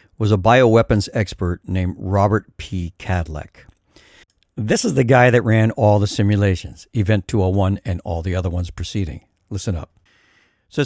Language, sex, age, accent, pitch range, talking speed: English, male, 60-79, American, 110-145 Hz, 165 wpm